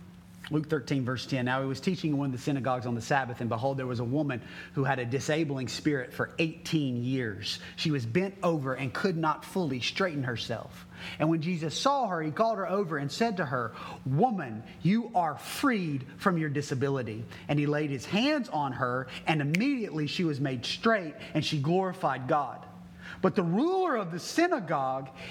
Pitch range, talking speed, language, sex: 120-195 Hz, 195 wpm, English, male